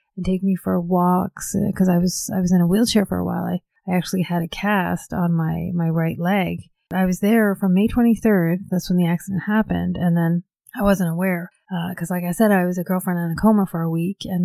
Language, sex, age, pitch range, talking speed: English, female, 30-49, 170-195 Hz, 250 wpm